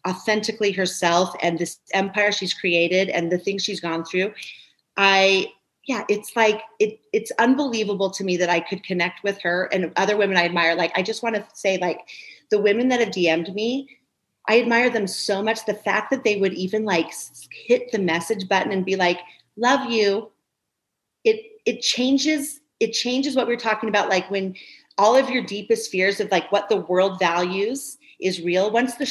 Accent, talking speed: American, 190 wpm